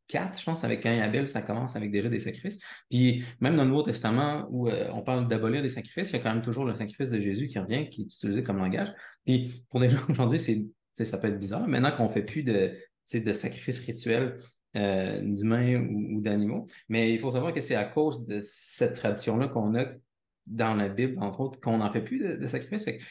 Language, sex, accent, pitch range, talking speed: French, male, Canadian, 105-135 Hz, 240 wpm